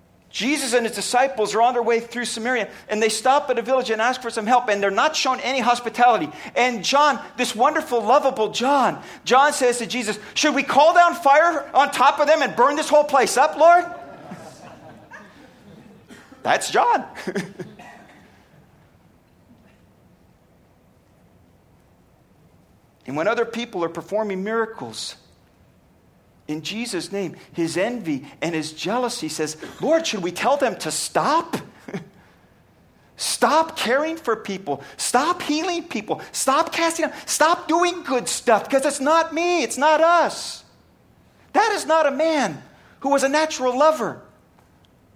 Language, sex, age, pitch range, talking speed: English, male, 50-69, 215-295 Hz, 145 wpm